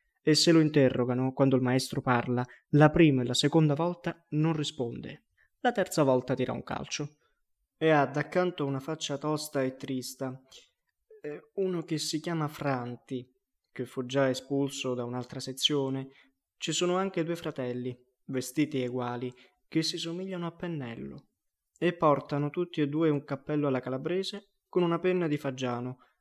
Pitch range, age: 130-155 Hz, 20-39